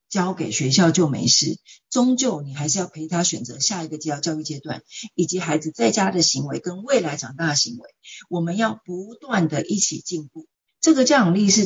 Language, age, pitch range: Chinese, 50-69, 155-200 Hz